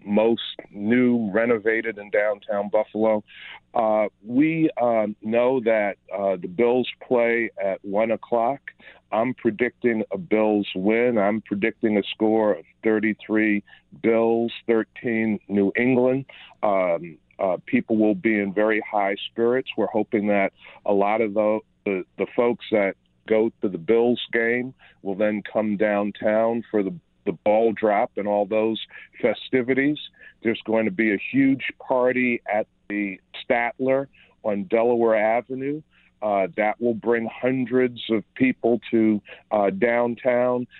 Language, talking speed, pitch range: English, 140 wpm, 105-125 Hz